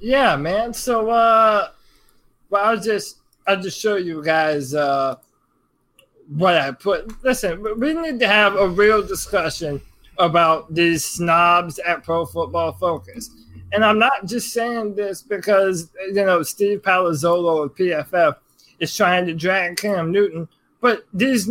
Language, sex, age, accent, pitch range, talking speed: English, male, 20-39, American, 170-220 Hz, 145 wpm